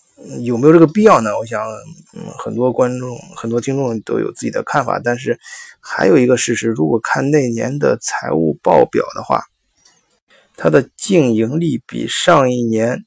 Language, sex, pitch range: Chinese, male, 115-155 Hz